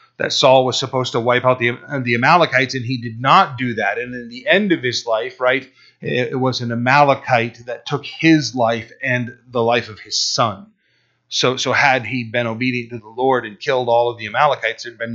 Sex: male